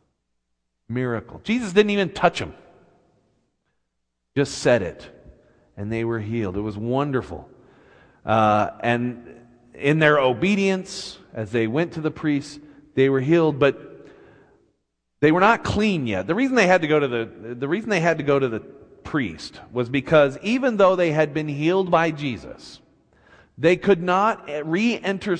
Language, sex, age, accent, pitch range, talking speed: English, male, 40-59, American, 120-185 Hz, 160 wpm